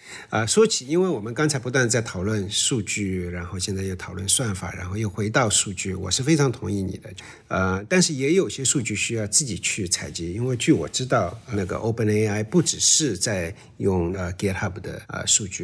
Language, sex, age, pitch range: Chinese, male, 50-69, 100-135 Hz